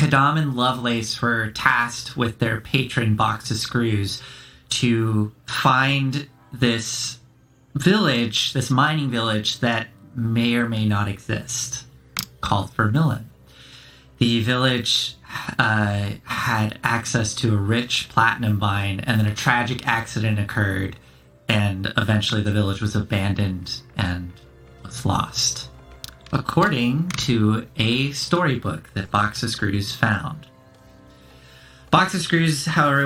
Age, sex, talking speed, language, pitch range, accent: 30-49, male, 115 wpm, English, 105-130 Hz, American